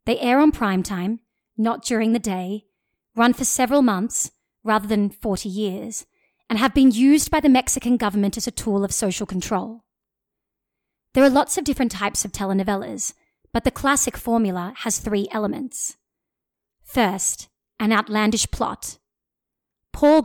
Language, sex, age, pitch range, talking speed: English, female, 30-49, 200-250 Hz, 150 wpm